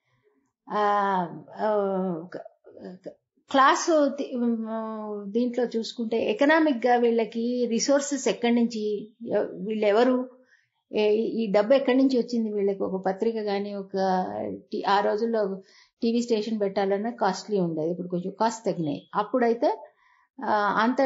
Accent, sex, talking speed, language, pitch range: native, female, 95 wpm, Telugu, 200-255 Hz